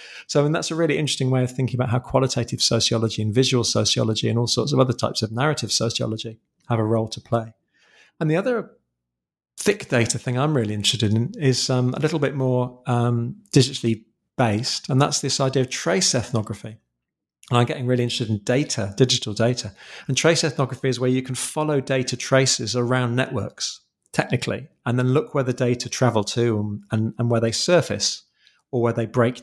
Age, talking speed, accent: 40-59, 195 wpm, British